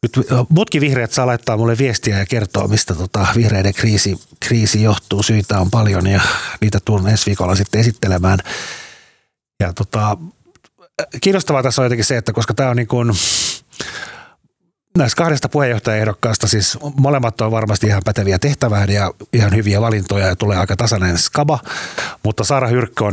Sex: male